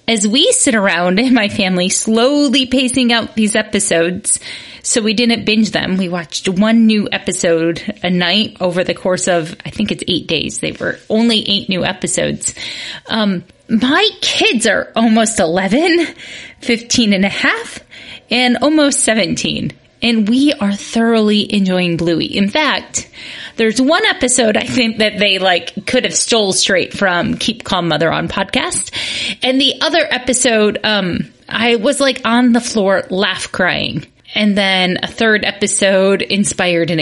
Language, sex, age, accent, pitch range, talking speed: English, female, 30-49, American, 190-240 Hz, 160 wpm